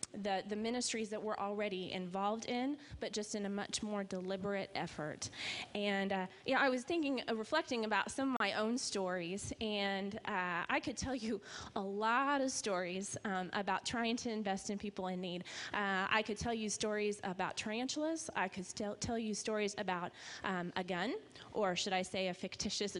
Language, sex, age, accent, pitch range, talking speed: English, female, 20-39, American, 190-240 Hz, 190 wpm